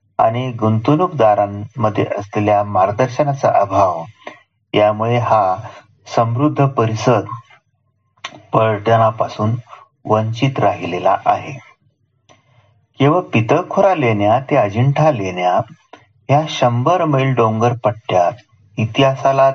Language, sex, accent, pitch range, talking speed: Marathi, male, native, 105-130 Hz, 45 wpm